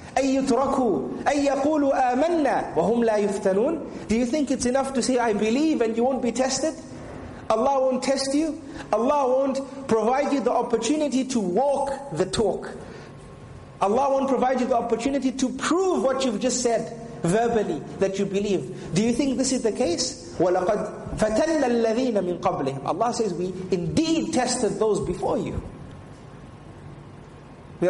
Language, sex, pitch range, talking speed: English, male, 175-250 Hz, 135 wpm